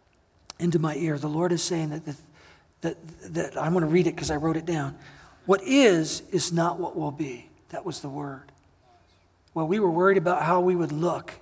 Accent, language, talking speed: American, English, 215 wpm